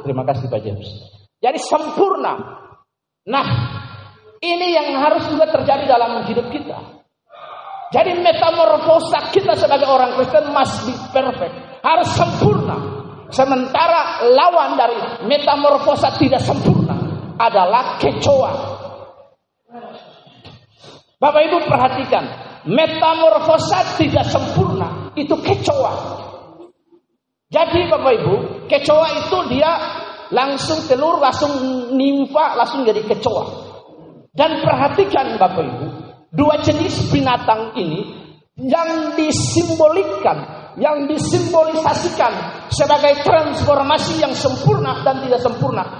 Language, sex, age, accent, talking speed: Indonesian, male, 40-59, native, 95 wpm